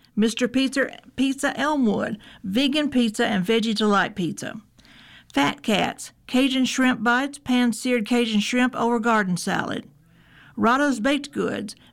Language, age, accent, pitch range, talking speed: English, 50-69, American, 205-260 Hz, 120 wpm